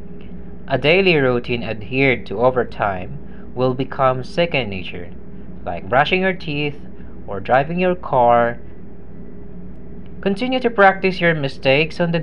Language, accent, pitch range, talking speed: English, Filipino, 120-185 Hz, 130 wpm